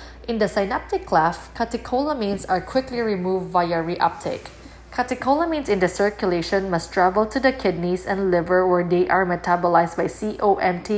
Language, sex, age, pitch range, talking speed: English, female, 20-39, 180-215 Hz, 150 wpm